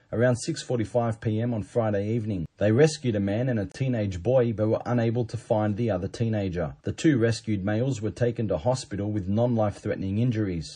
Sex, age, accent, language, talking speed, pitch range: male, 30-49, Australian, English, 185 wpm, 105-125 Hz